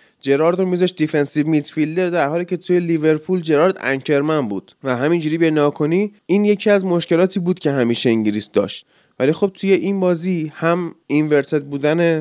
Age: 20-39